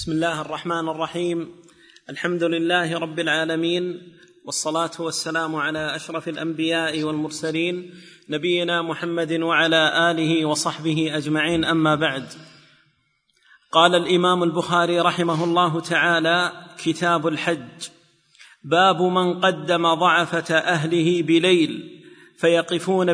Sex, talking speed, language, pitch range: male, 95 wpm, Arabic, 165-185 Hz